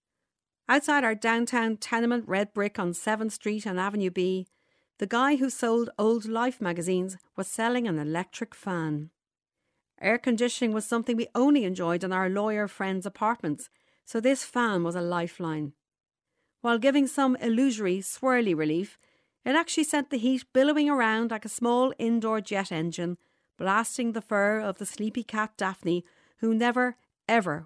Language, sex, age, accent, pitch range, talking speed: English, female, 40-59, Irish, 185-240 Hz, 155 wpm